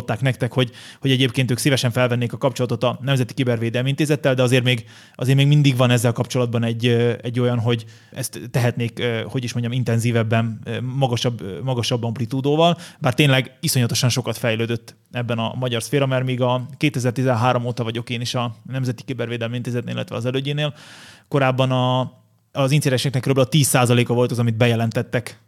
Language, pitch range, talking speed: Hungarian, 120-135 Hz, 165 wpm